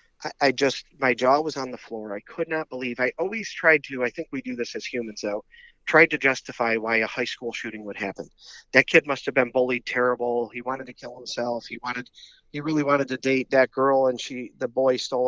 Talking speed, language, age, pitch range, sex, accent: 235 wpm, English, 40-59, 120-145 Hz, male, American